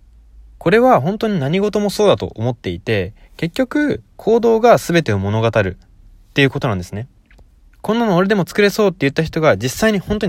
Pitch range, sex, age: 105-175 Hz, male, 20-39